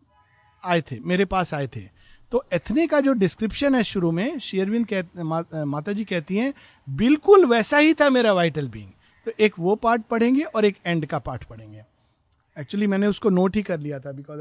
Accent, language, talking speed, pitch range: native, Hindi, 185 wpm, 135-210 Hz